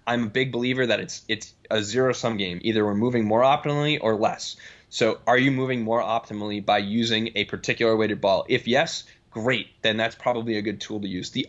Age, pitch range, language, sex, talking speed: 10-29, 105-125 Hz, English, male, 220 wpm